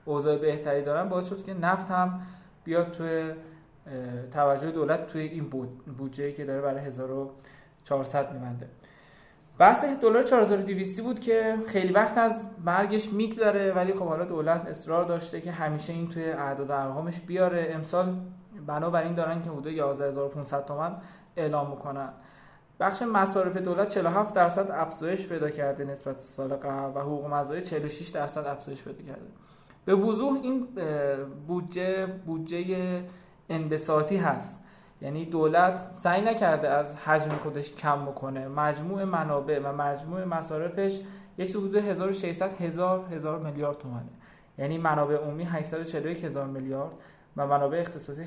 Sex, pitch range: male, 140-180 Hz